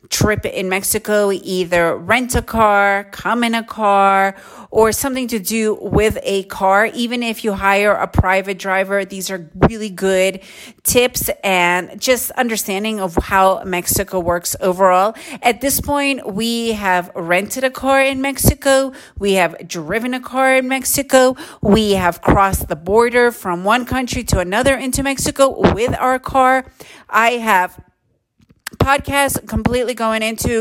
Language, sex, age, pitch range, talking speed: English, female, 40-59, 190-240 Hz, 150 wpm